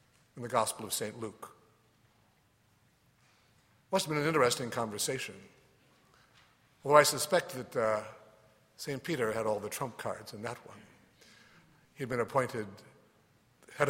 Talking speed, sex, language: 130 wpm, male, English